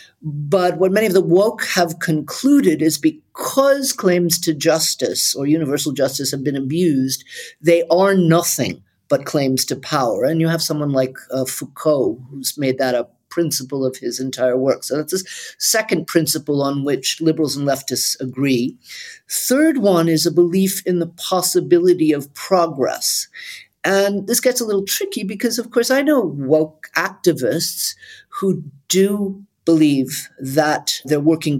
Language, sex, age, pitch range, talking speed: English, male, 50-69, 140-190 Hz, 155 wpm